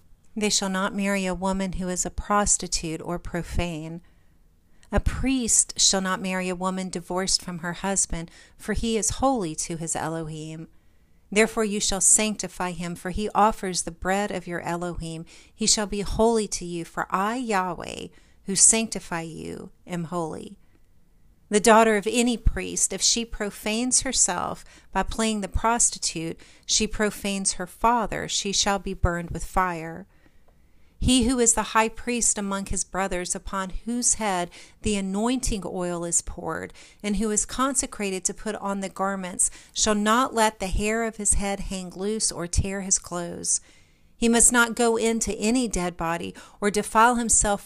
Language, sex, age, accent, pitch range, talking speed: English, female, 40-59, American, 175-220 Hz, 165 wpm